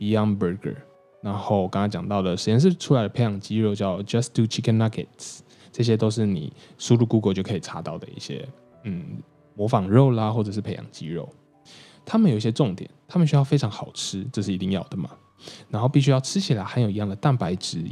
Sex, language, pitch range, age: male, Chinese, 105-140 Hz, 10-29